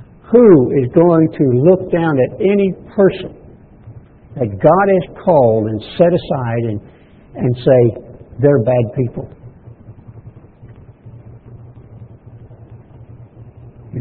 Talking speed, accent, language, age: 100 wpm, American, English, 60-79